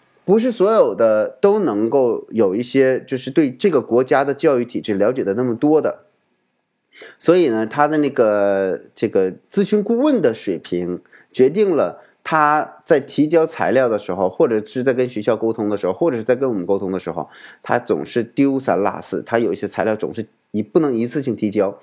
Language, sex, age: Chinese, male, 20-39